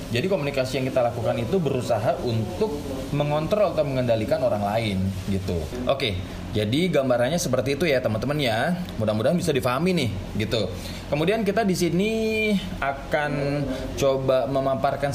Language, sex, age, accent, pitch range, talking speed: Indonesian, male, 20-39, native, 105-150 Hz, 135 wpm